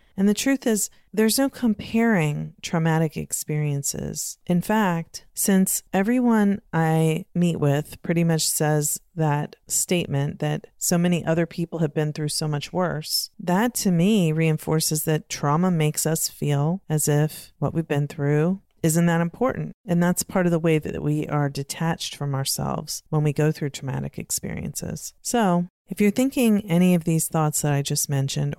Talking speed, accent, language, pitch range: 170 wpm, American, English, 150-180 Hz